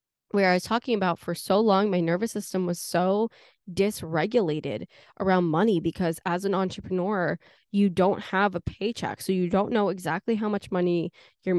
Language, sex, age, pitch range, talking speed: English, female, 10-29, 170-200 Hz, 175 wpm